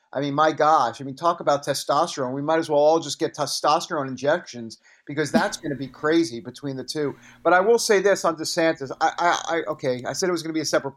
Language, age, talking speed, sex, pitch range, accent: English, 50-69, 240 wpm, male, 135-175 Hz, American